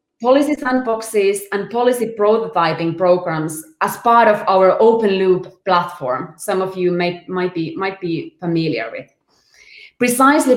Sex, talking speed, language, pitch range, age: female, 135 wpm, English, 180-225 Hz, 20-39